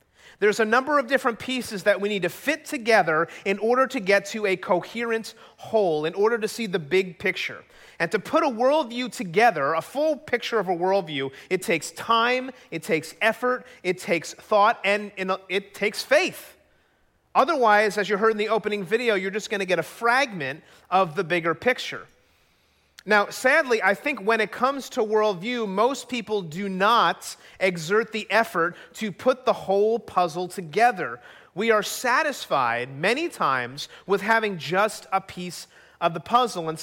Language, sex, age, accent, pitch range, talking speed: English, male, 30-49, American, 185-235 Hz, 175 wpm